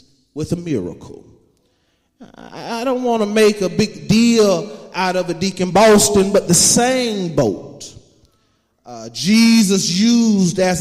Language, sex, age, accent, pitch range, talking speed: English, male, 30-49, American, 200-260 Hz, 135 wpm